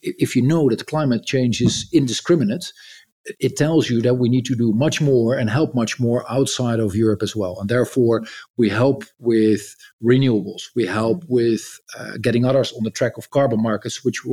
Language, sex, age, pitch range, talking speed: Italian, male, 50-69, 110-130 Hz, 195 wpm